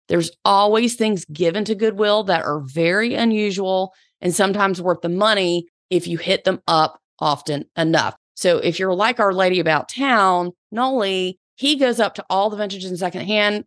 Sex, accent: female, American